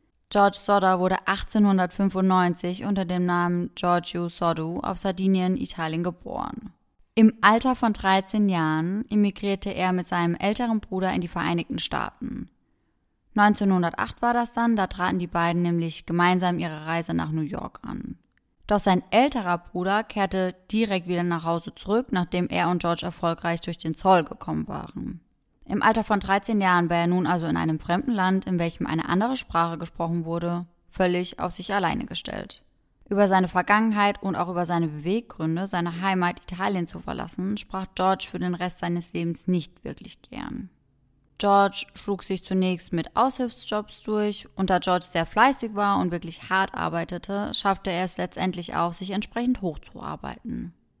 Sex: female